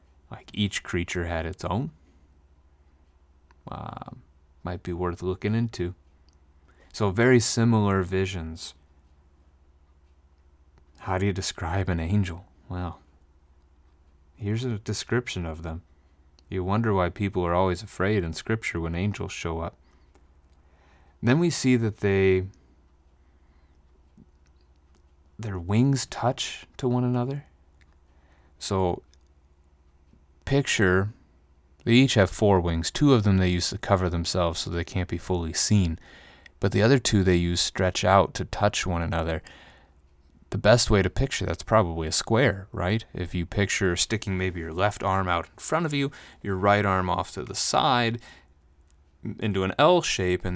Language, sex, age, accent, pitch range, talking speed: English, male, 30-49, American, 75-100 Hz, 140 wpm